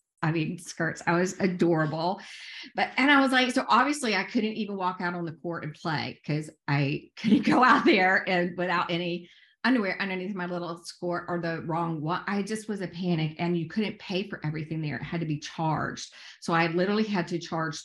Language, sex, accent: English, female, American